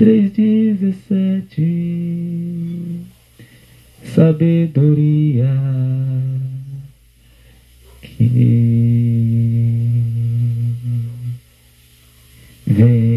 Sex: male